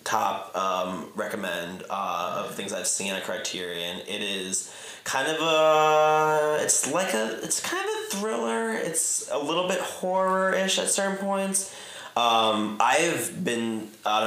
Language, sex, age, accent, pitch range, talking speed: English, male, 20-39, American, 105-125 Hz, 150 wpm